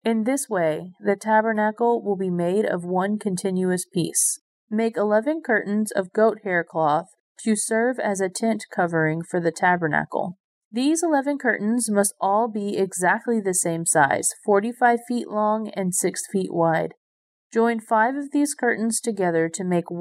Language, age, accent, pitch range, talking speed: English, 30-49, American, 180-225 Hz, 160 wpm